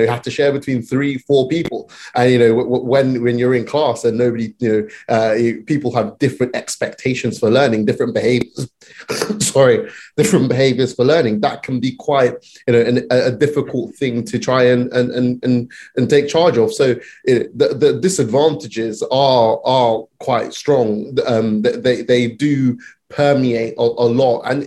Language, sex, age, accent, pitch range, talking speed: English, male, 20-39, British, 120-135 Hz, 175 wpm